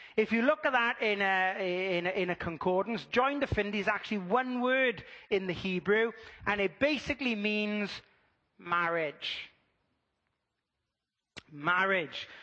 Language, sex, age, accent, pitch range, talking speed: English, male, 30-49, British, 165-215 Hz, 130 wpm